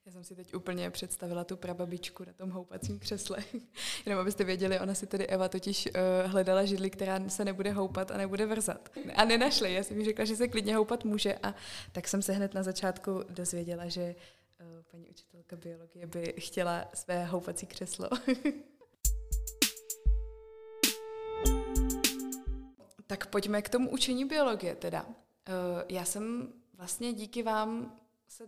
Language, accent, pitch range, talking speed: Czech, native, 185-215 Hz, 150 wpm